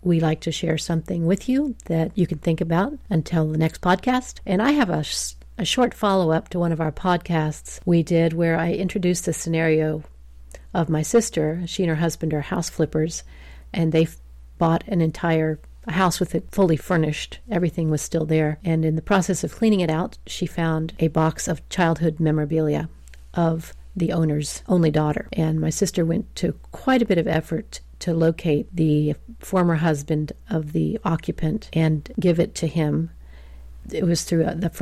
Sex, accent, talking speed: female, American, 185 wpm